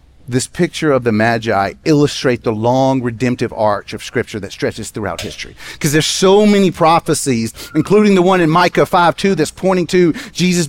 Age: 30-49